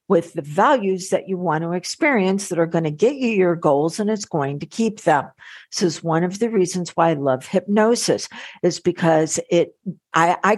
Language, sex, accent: English, female, American